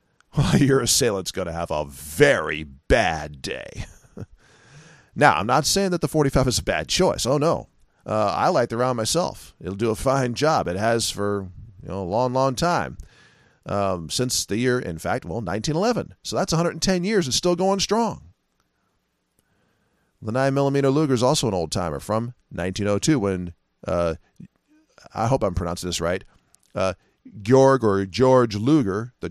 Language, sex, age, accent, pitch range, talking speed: English, male, 40-59, American, 95-145 Hz, 180 wpm